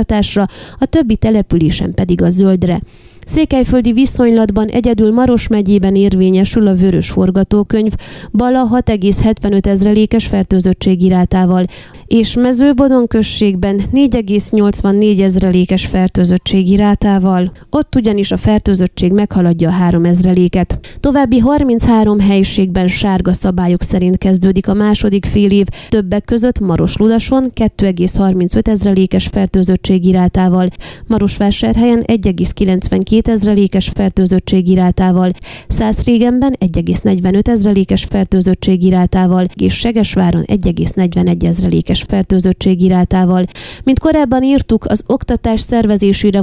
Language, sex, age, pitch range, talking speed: Hungarian, female, 20-39, 185-220 Hz, 100 wpm